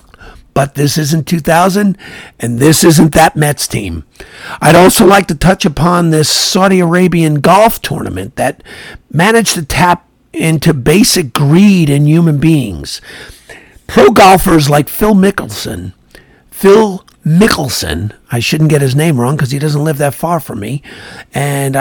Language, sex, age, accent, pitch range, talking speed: English, male, 50-69, American, 135-175 Hz, 145 wpm